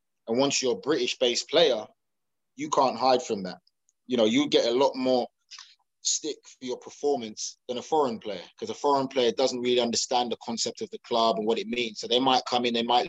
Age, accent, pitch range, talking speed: 20-39, British, 115-130 Hz, 225 wpm